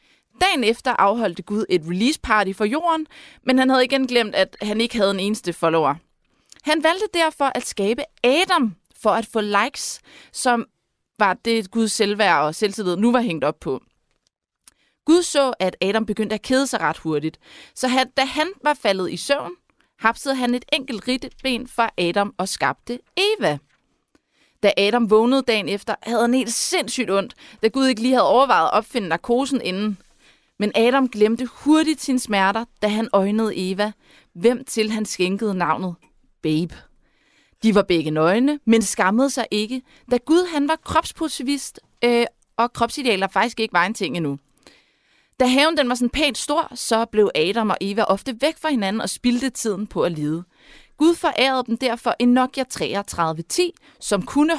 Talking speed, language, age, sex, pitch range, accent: 175 wpm, Danish, 30-49, female, 205-265 Hz, native